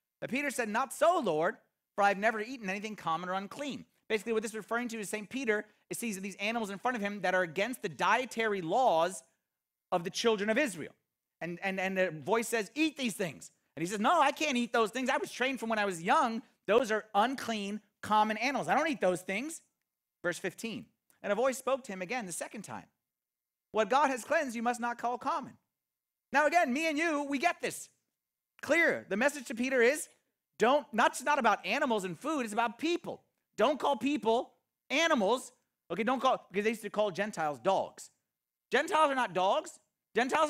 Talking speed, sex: 210 wpm, male